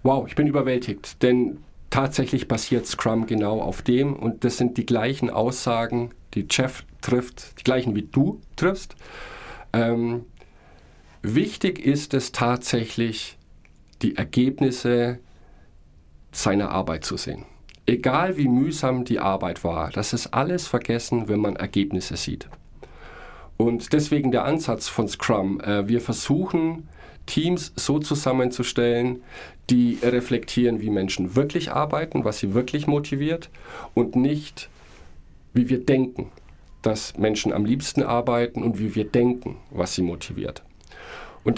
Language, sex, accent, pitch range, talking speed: German, male, German, 100-130 Hz, 130 wpm